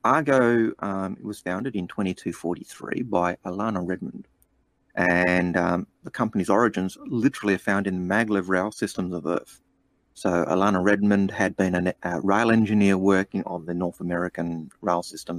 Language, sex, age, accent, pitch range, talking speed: English, male, 30-49, Australian, 85-100 Hz, 160 wpm